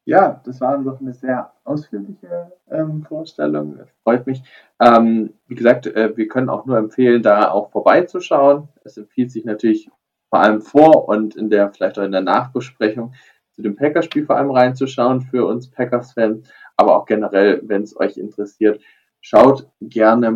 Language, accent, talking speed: German, German, 170 wpm